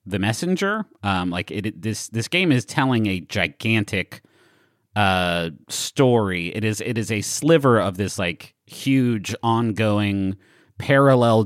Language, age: English, 30-49